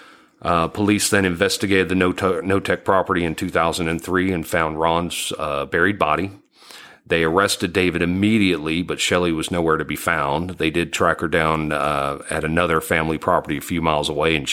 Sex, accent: male, American